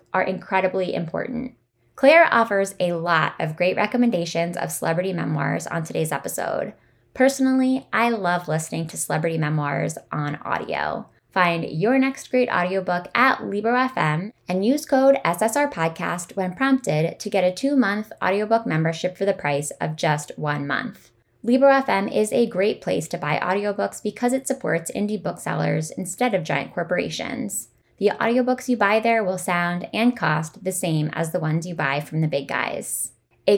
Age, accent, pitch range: 10-29, American, 165-230 Hz